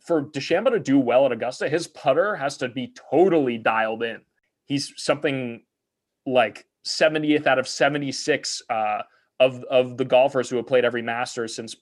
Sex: male